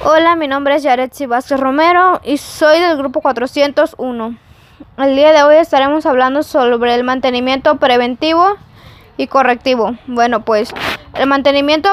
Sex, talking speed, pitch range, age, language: female, 140 wpm, 265-320 Hz, 20-39, Spanish